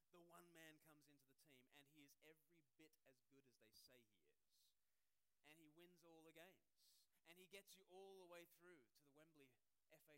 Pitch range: 150-225 Hz